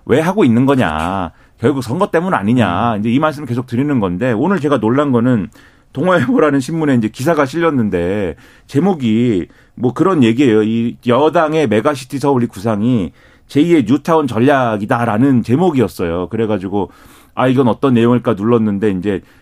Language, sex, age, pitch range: Korean, male, 40-59, 115-155 Hz